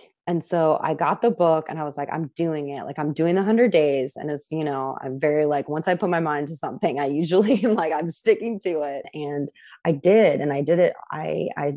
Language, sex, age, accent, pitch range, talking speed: English, female, 20-39, American, 150-185 Hz, 255 wpm